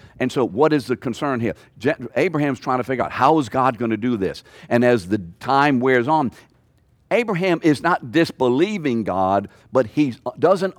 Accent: American